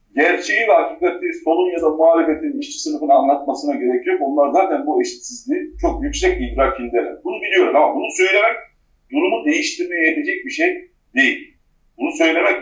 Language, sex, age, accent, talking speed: Turkish, male, 50-69, native, 155 wpm